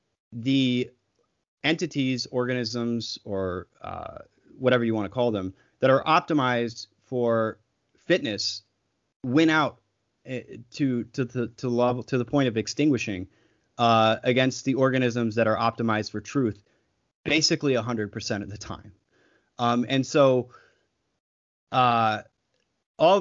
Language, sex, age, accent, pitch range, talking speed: English, male, 30-49, American, 110-130 Hz, 125 wpm